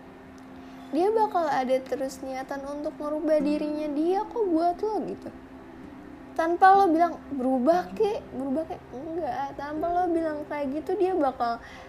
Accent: native